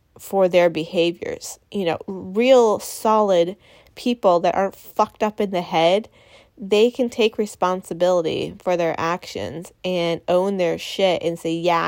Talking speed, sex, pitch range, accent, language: 145 wpm, female, 175-205 Hz, American, English